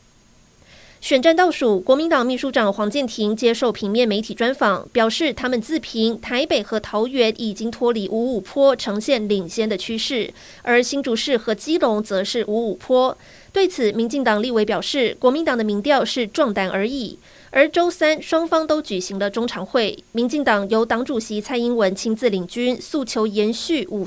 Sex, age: female, 30-49